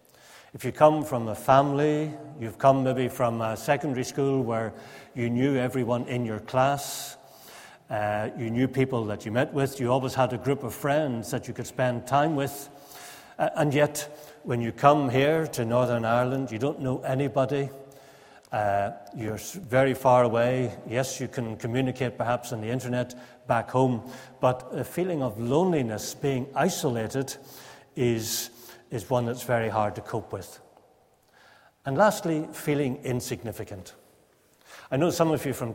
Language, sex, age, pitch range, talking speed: English, male, 60-79, 120-140 Hz, 160 wpm